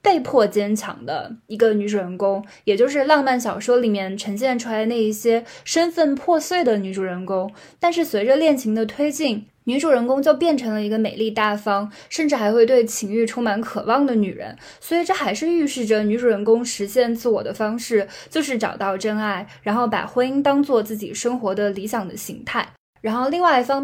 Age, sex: 10-29, female